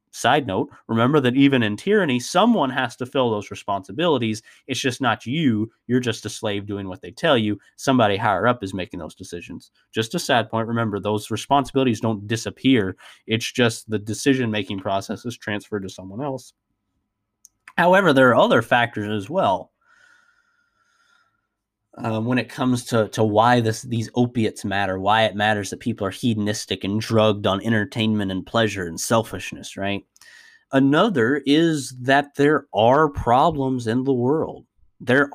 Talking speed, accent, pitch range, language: 165 wpm, American, 105-130 Hz, English